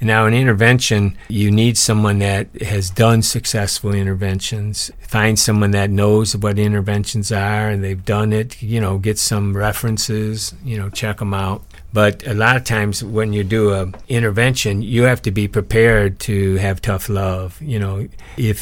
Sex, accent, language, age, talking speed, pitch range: male, American, English, 50-69, 175 wpm, 100-110 Hz